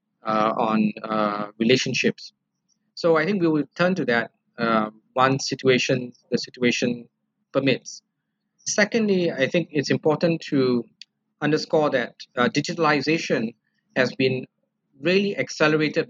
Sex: male